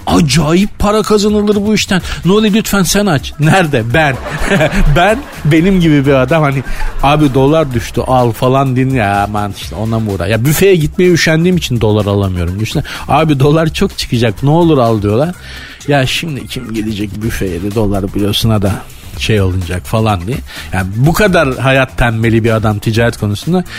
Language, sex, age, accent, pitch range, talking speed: Turkish, male, 50-69, native, 115-180 Hz, 165 wpm